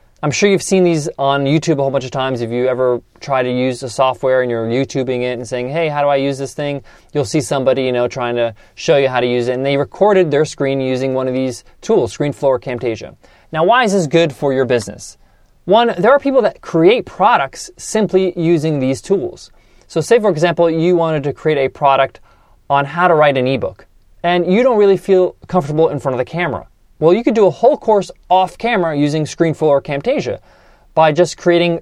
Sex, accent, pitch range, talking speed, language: male, American, 130-170 Hz, 225 wpm, English